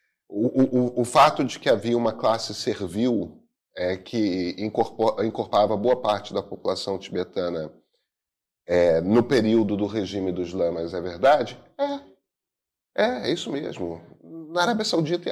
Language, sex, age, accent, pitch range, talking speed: Portuguese, male, 30-49, Brazilian, 110-155 Hz, 145 wpm